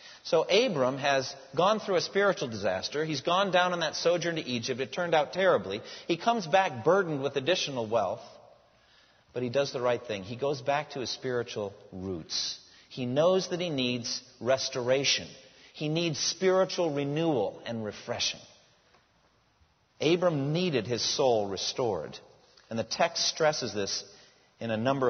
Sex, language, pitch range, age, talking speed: male, English, 125-175 Hz, 40-59, 155 wpm